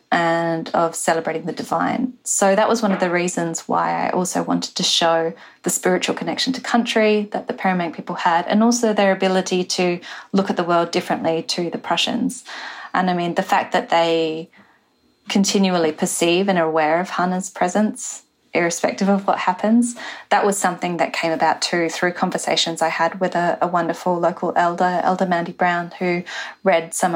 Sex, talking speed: female, 185 wpm